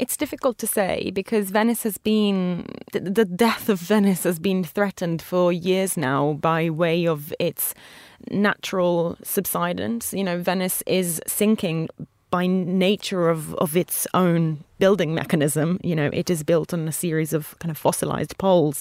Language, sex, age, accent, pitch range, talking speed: English, female, 20-39, British, 160-205 Hz, 160 wpm